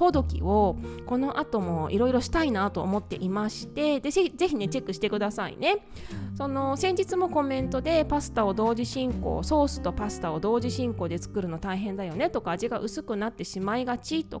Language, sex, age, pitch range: Japanese, female, 20-39, 195-285 Hz